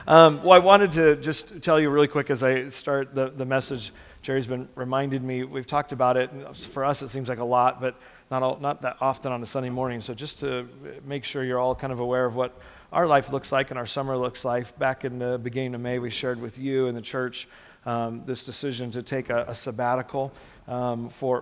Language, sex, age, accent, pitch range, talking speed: English, male, 40-59, American, 125-135 Hz, 240 wpm